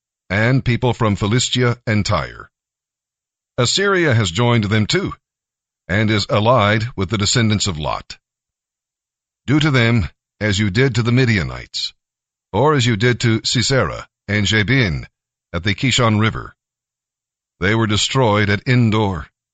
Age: 60-79